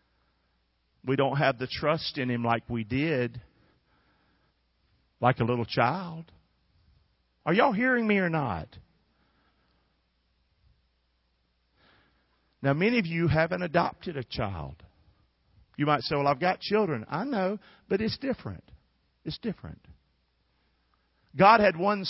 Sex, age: male, 50-69